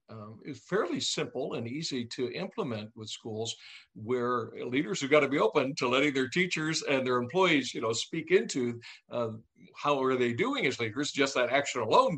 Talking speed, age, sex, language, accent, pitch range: 190 wpm, 60-79, male, English, American, 120-145 Hz